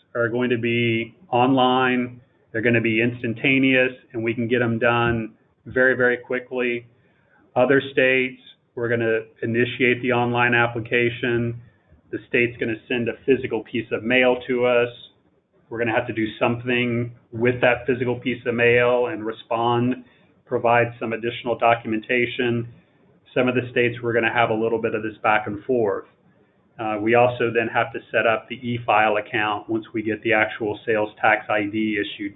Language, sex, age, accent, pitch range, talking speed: English, male, 30-49, American, 115-125 Hz, 175 wpm